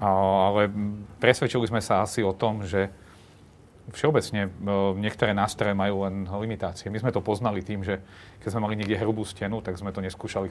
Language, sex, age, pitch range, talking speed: Slovak, male, 40-59, 95-110 Hz, 170 wpm